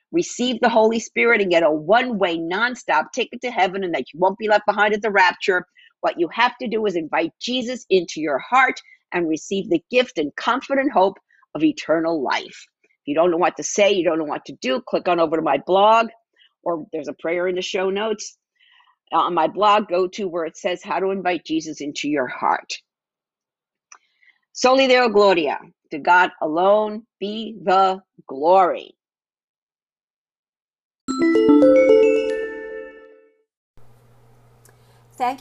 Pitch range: 165-230 Hz